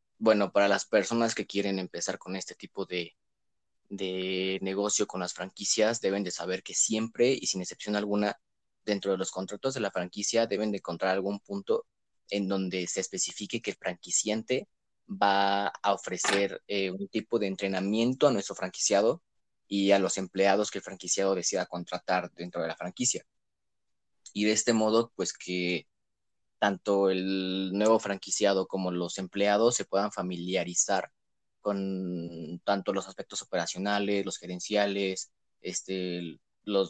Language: Spanish